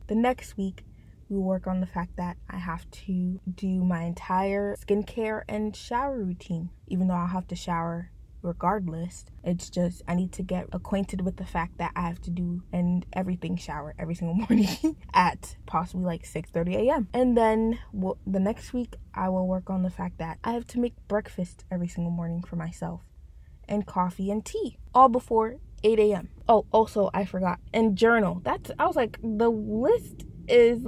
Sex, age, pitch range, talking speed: female, 20-39, 175-215 Hz, 185 wpm